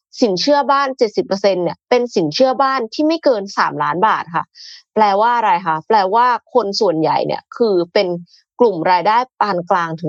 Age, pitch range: 20-39, 185-255 Hz